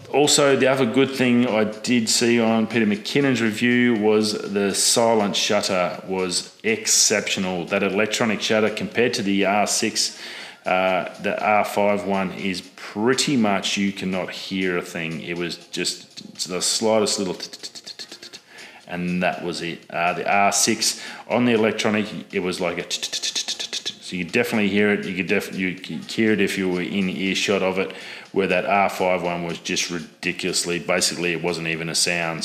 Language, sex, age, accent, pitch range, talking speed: English, male, 30-49, Australian, 90-105 Hz, 160 wpm